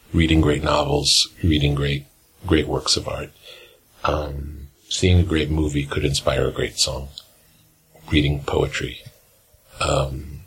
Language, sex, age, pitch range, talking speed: English, male, 50-69, 75-90 Hz, 125 wpm